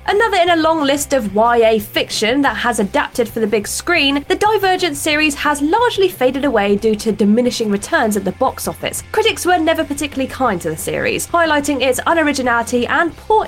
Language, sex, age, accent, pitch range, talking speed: English, female, 20-39, British, 235-350 Hz, 190 wpm